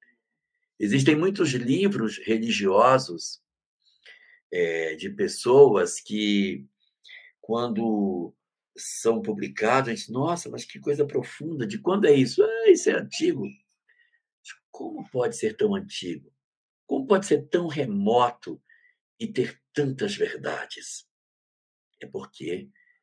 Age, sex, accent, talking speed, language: 60-79, male, Brazilian, 110 wpm, Portuguese